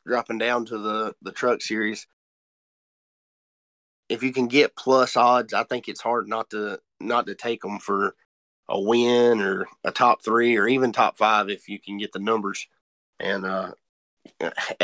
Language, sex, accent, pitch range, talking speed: English, male, American, 105-120 Hz, 170 wpm